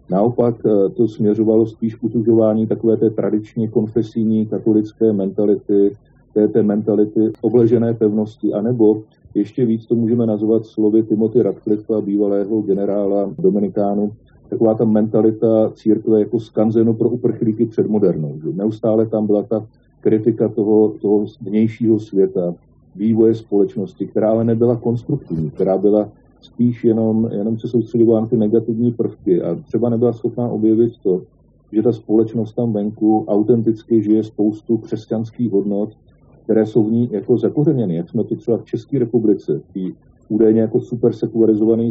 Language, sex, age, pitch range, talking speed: Slovak, male, 40-59, 105-115 Hz, 140 wpm